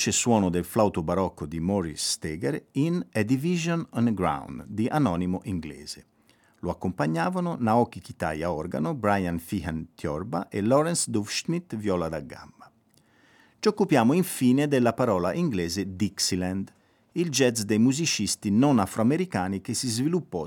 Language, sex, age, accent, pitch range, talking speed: Italian, male, 50-69, native, 90-135 Hz, 135 wpm